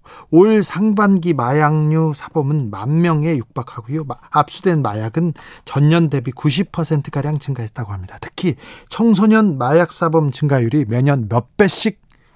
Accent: native